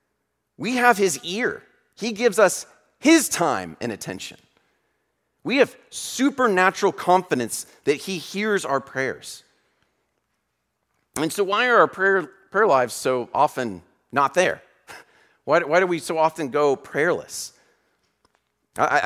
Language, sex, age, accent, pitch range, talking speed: English, male, 40-59, American, 135-220 Hz, 130 wpm